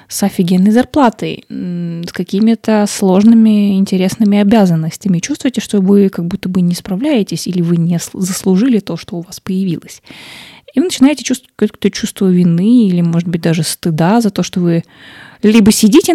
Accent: native